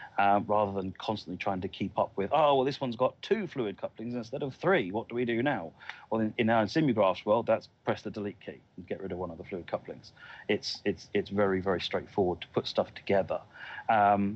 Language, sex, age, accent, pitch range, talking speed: English, male, 40-59, British, 100-120 Hz, 235 wpm